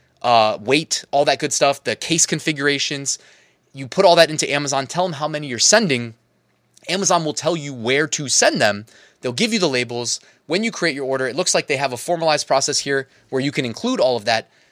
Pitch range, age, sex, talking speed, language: 125-175 Hz, 20-39, male, 225 wpm, English